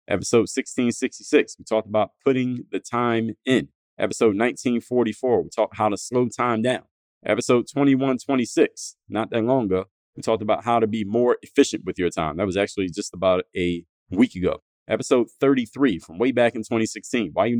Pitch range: 100-120 Hz